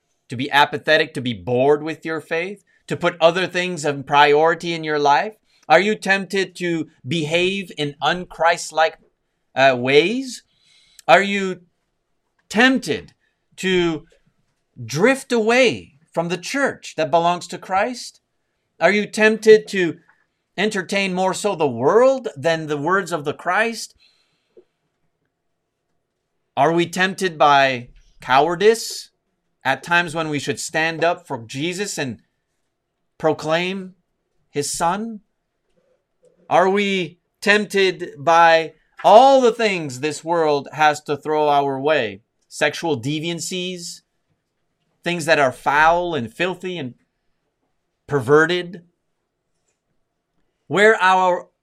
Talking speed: 115 wpm